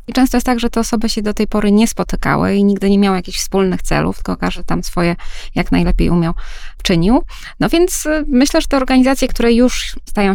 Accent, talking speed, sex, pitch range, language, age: native, 210 wpm, female, 185-220 Hz, Polish, 20-39